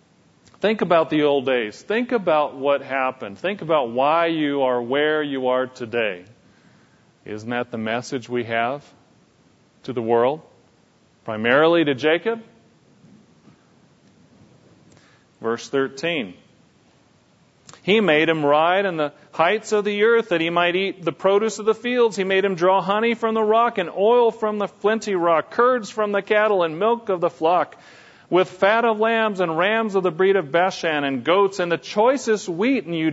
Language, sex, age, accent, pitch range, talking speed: English, male, 40-59, American, 145-210 Hz, 170 wpm